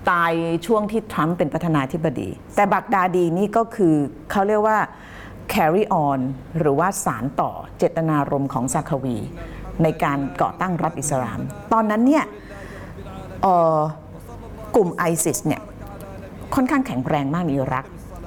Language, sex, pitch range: Thai, female, 140-195 Hz